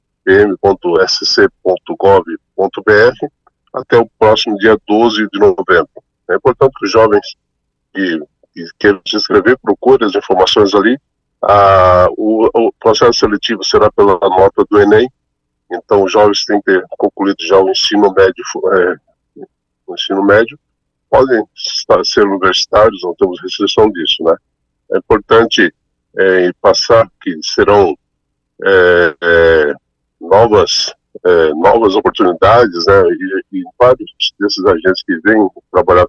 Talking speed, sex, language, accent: 125 wpm, male, Portuguese, Brazilian